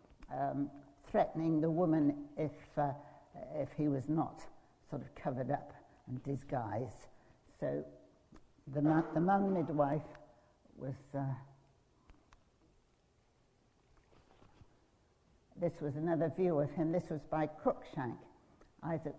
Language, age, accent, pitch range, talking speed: English, 60-79, British, 140-165 Hz, 110 wpm